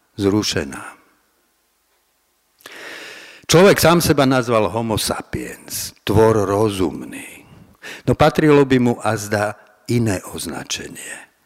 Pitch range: 105-135 Hz